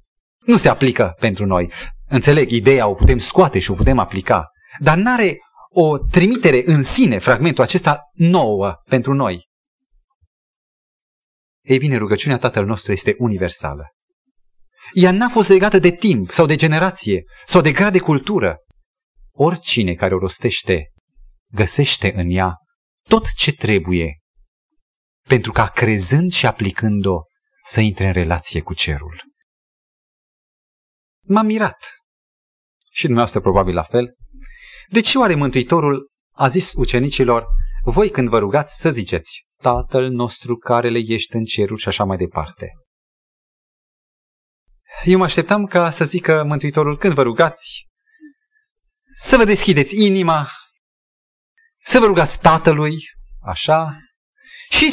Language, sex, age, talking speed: Romanian, male, 30-49, 130 wpm